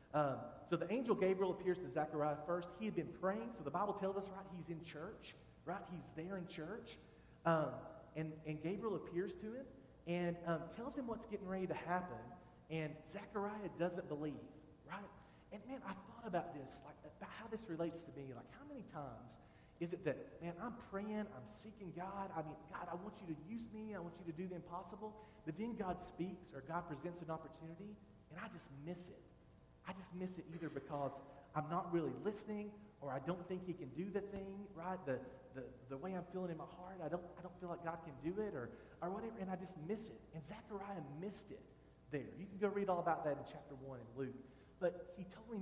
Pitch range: 155-200 Hz